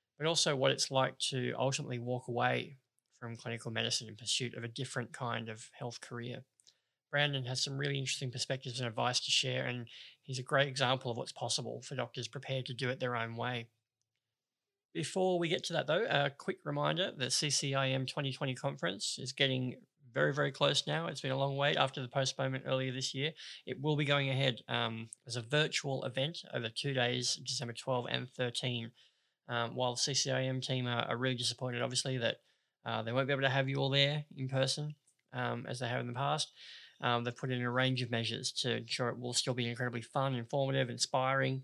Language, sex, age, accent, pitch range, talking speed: English, male, 20-39, Australian, 125-140 Hz, 210 wpm